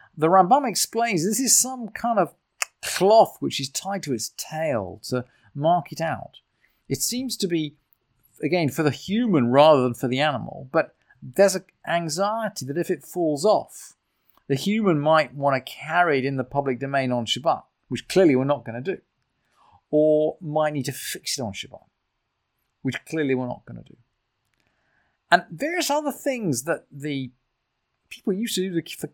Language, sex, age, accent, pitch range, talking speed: English, male, 40-59, British, 135-195 Hz, 180 wpm